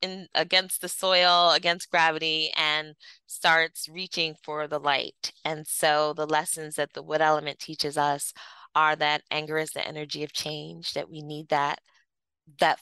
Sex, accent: female, American